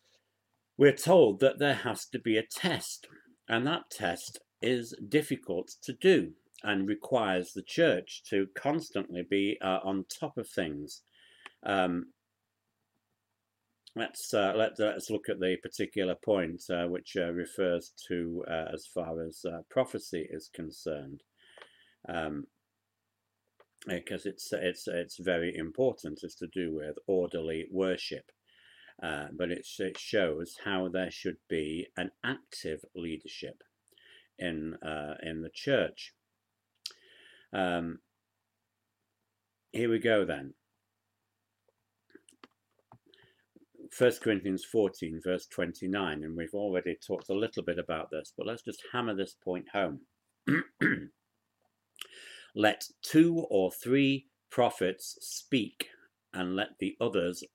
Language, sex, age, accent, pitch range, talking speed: English, male, 60-79, British, 85-110 Hz, 120 wpm